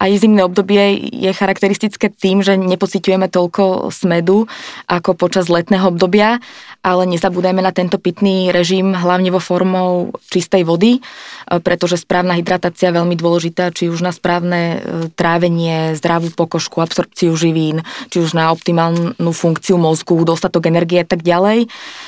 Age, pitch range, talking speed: 20-39, 165-185 Hz, 140 wpm